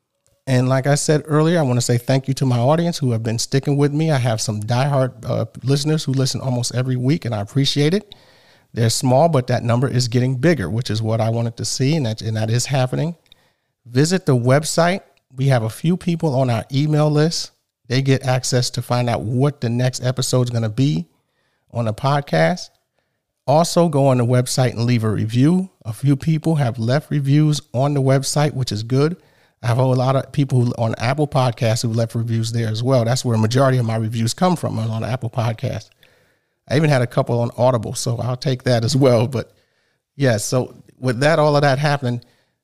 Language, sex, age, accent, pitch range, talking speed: English, male, 40-59, American, 120-140 Hz, 220 wpm